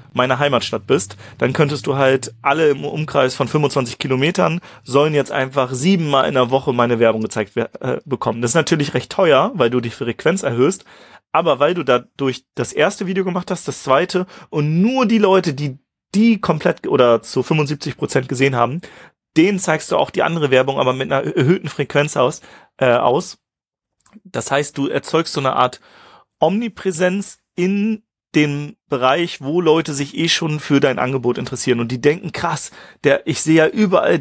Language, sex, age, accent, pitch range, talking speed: German, male, 30-49, German, 130-160 Hz, 180 wpm